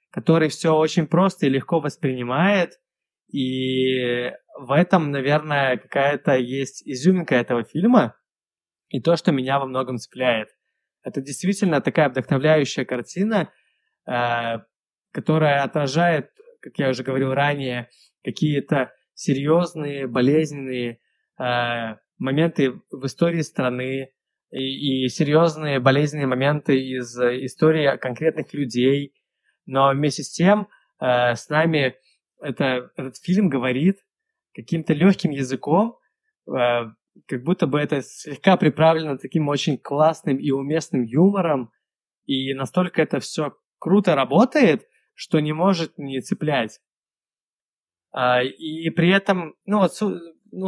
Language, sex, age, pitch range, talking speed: Russian, male, 20-39, 130-170 Hz, 110 wpm